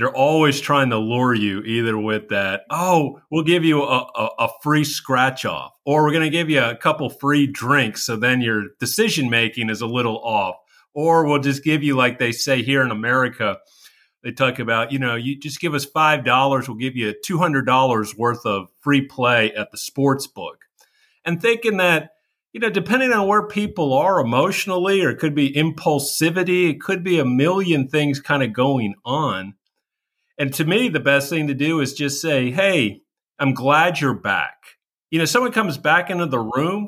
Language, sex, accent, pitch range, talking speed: English, male, American, 125-160 Hz, 200 wpm